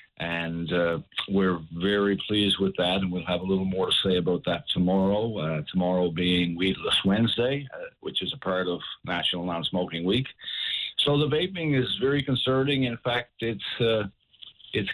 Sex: male